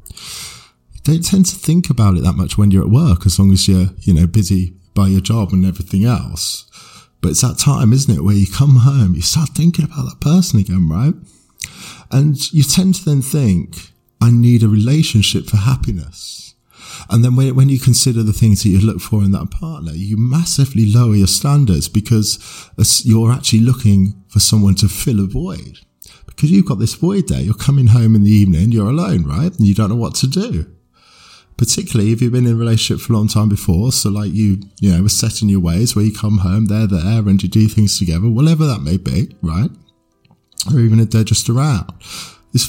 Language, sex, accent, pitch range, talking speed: English, male, British, 100-135 Hz, 210 wpm